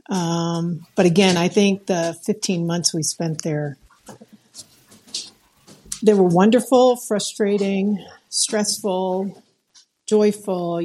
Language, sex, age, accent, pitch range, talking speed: English, female, 50-69, American, 165-200 Hz, 95 wpm